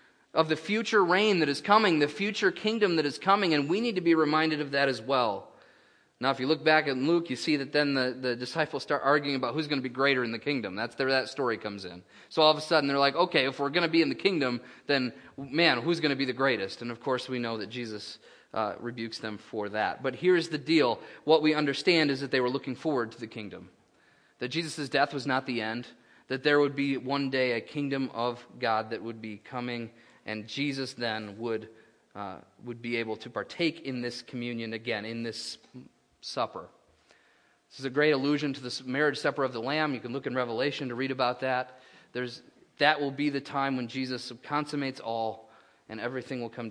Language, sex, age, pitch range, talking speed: English, male, 30-49, 115-145 Hz, 230 wpm